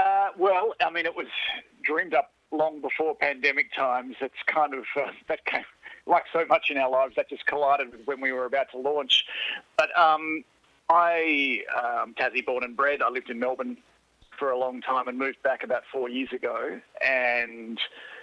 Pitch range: 130-155 Hz